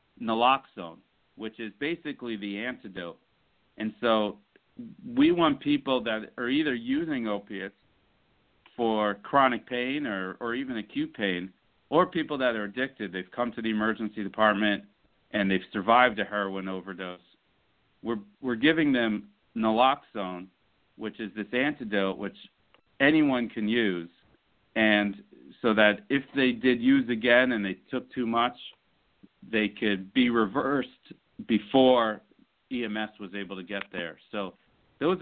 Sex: male